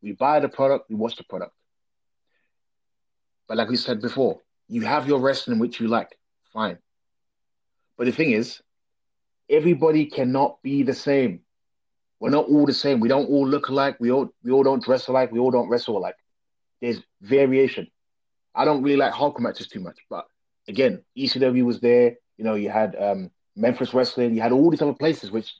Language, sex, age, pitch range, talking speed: English, male, 30-49, 120-155 Hz, 190 wpm